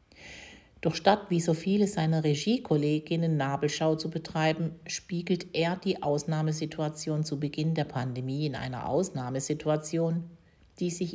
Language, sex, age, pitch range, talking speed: German, female, 50-69, 140-165 Hz, 125 wpm